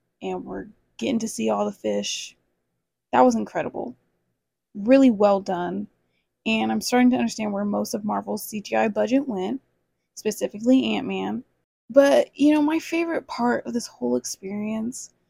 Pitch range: 170-255 Hz